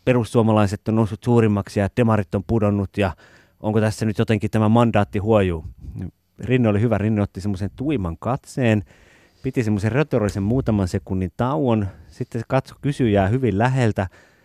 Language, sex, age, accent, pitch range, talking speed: Finnish, male, 30-49, native, 100-130 Hz, 150 wpm